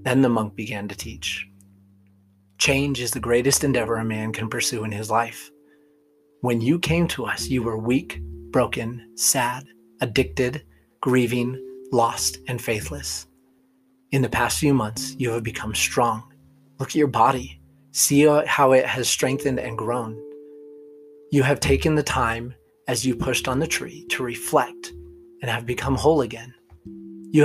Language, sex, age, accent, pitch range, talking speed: English, male, 30-49, American, 115-140 Hz, 155 wpm